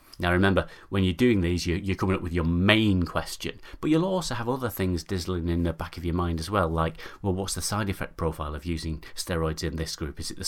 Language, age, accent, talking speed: English, 30-49, British, 250 wpm